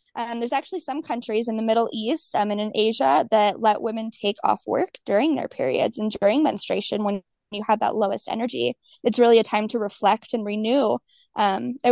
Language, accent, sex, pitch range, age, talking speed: English, American, female, 210-260 Hz, 20-39, 205 wpm